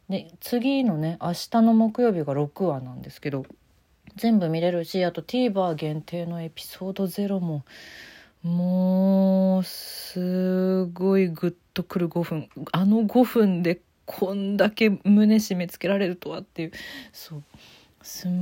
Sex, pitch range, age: female, 165-215 Hz, 40-59